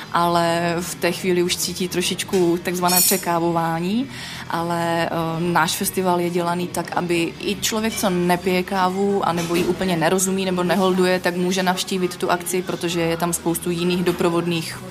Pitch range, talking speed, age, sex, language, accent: 170-185 Hz, 155 wpm, 20-39, female, Czech, native